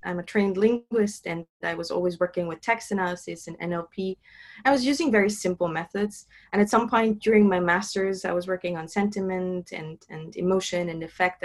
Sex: female